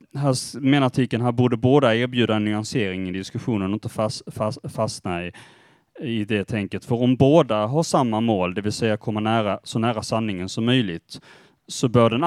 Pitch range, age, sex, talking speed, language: 105-125 Hz, 30-49, male, 180 wpm, Swedish